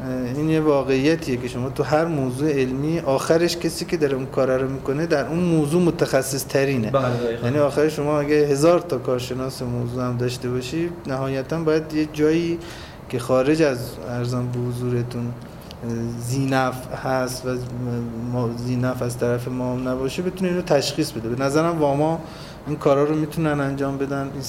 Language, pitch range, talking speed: Persian, 125-155 Hz, 160 wpm